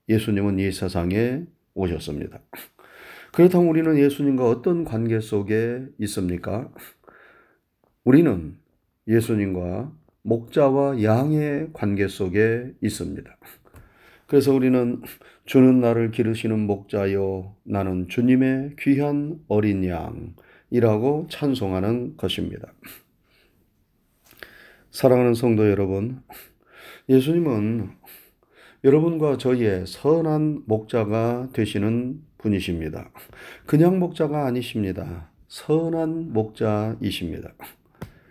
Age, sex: 30-49, male